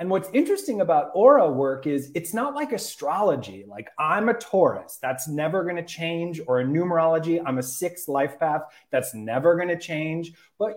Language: English